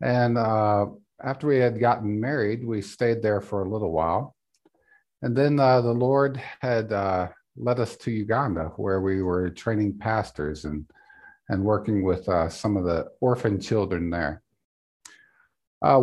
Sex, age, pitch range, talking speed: male, 50-69, 95-130 Hz, 155 wpm